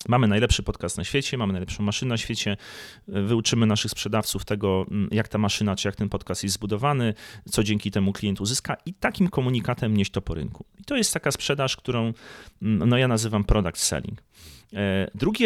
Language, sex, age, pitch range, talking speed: Polish, male, 30-49, 100-140 Hz, 180 wpm